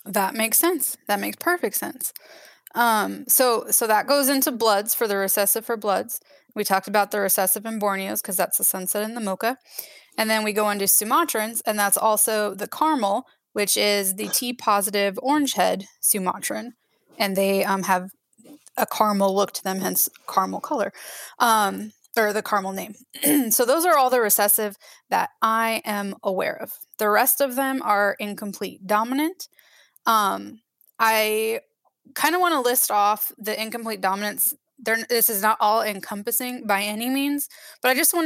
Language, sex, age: English, female, 10-29